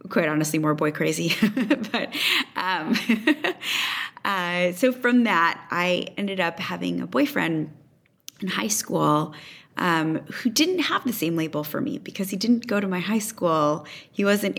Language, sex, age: English, female, 20-39